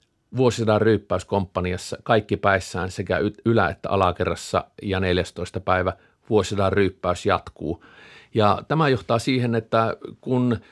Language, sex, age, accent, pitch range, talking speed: Finnish, male, 50-69, native, 100-115 Hz, 120 wpm